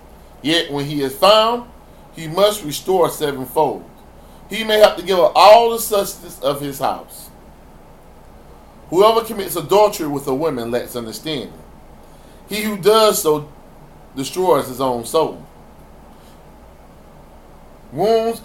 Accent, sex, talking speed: American, male, 125 wpm